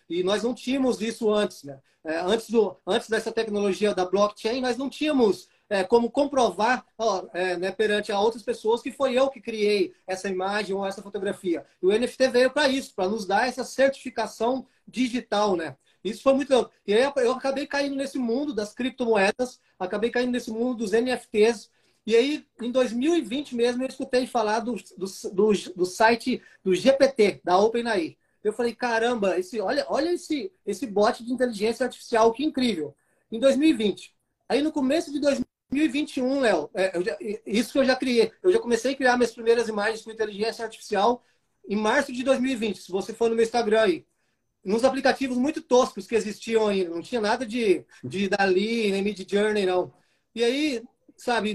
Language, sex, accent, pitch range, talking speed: Portuguese, male, Brazilian, 210-260 Hz, 175 wpm